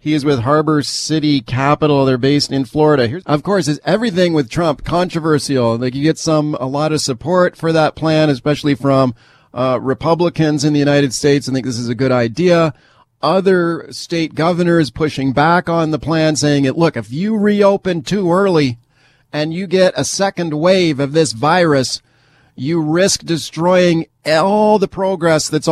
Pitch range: 130-155 Hz